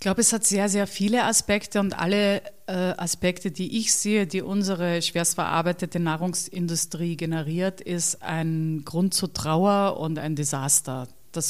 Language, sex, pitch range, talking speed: German, female, 170-205 Hz, 155 wpm